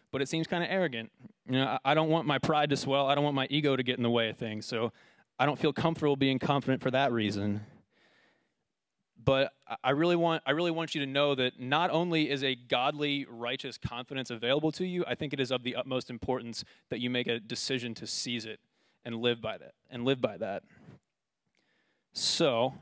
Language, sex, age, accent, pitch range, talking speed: English, male, 20-39, American, 125-155 Hz, 215 wpm